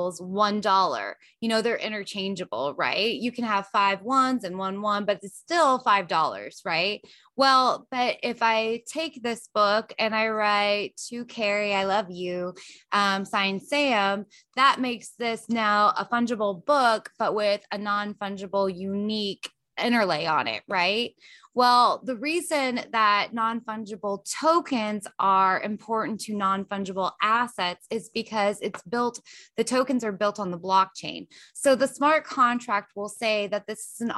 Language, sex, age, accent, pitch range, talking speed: English, female, 20-39, American, 200-240 Hz, 155 wpm